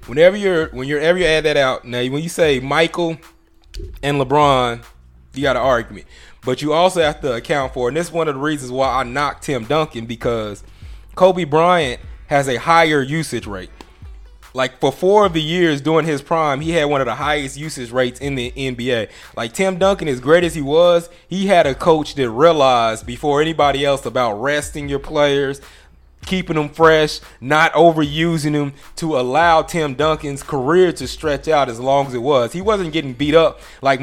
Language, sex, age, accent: English, male, 20-39, American